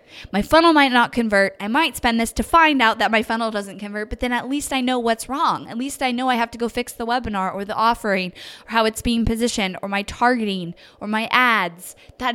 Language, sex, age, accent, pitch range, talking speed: English, female, 10-29, American, 195-255 Hz, 250 wpm